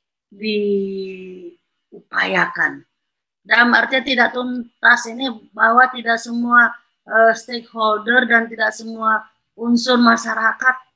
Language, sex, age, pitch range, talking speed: Indonesian, female, 20-39, 205-235 Hz, 90 wpm